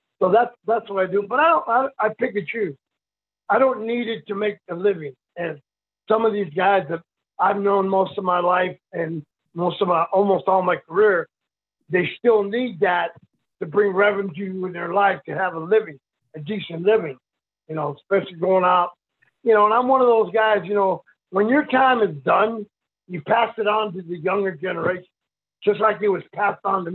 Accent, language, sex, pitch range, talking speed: American, English, male, 180-215 Hz, 210 wpm